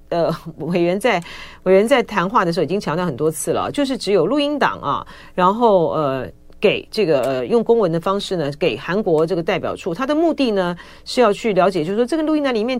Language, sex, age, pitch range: Chinese, female, 40-59, 160-230 Hz